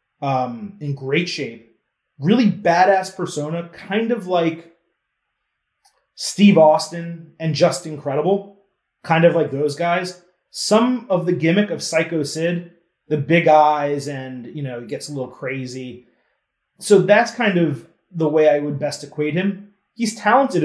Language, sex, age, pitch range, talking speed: English, male, 30-49, 140-185 Hz, 150 wpm